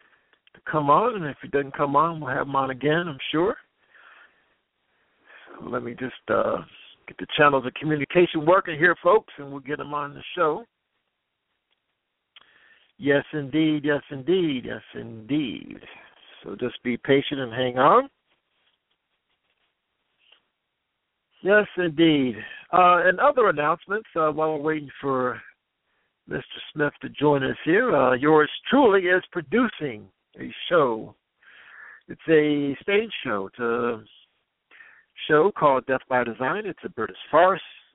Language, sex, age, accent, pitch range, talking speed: English, male, 60-79, American, 125-165 Hz, 140 wpm